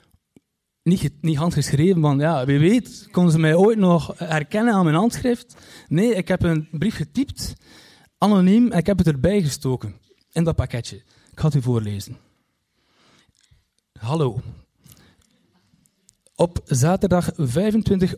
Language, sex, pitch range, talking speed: Dutch, male, 135-175 Hz, 130 wpm